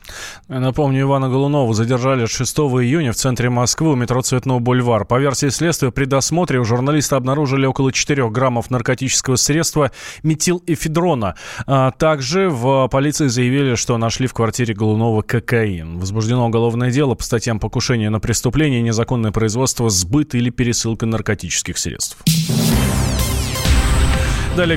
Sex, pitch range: male, 125-160 Hz